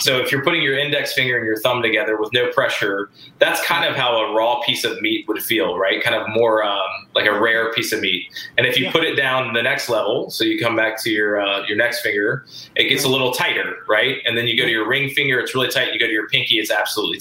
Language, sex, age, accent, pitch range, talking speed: English, male, 20-39, American, 115-145 Hz, 275 wpm